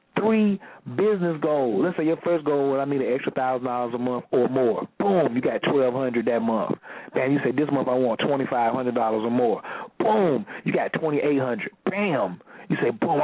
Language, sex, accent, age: English, male, American, 40-59